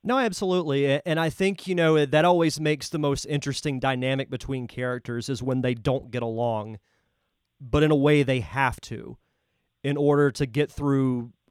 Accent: American